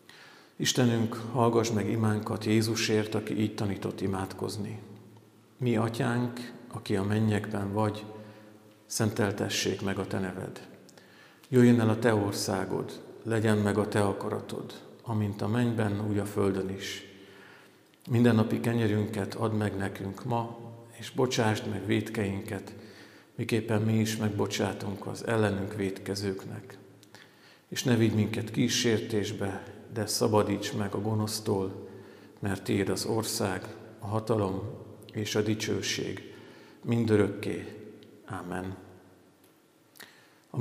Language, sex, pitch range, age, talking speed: Hungarian, male, 100-115 Hz, 50-69, 115 wpm